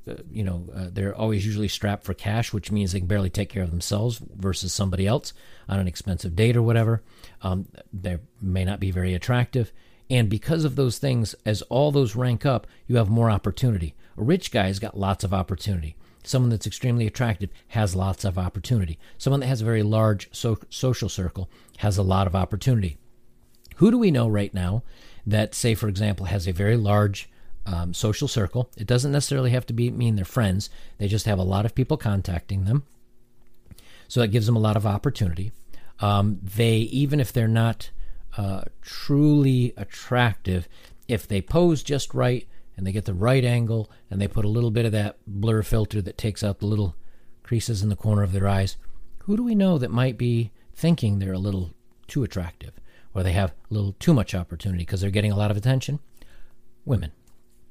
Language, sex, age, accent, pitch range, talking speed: English, male, 40-59, American, 95-120 Hz, 200 wpm